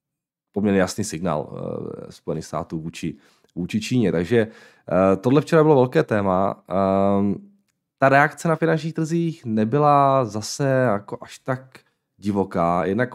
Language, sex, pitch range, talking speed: Czech, male, 90-120 Hz, 120 wpm